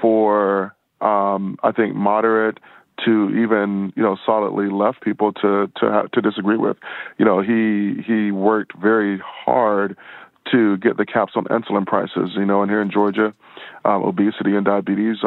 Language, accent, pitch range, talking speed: English, American, 100-115 Hz, 165 wpm